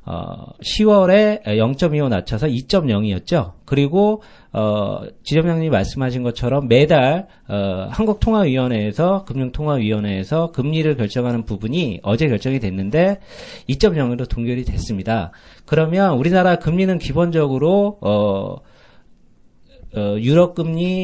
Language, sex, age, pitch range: Korean, male, 40-59, 120-175 Hz